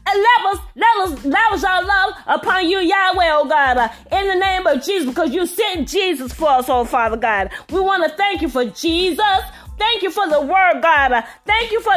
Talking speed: 220 wpm